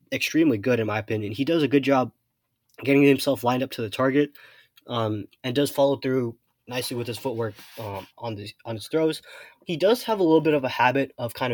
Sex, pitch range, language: male, 110-140 Hz, English